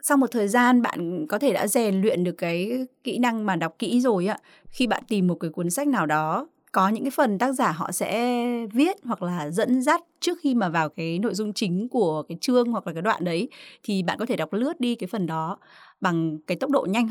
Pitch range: 180-245 Hz